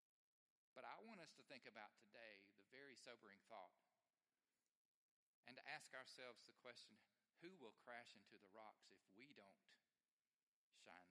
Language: English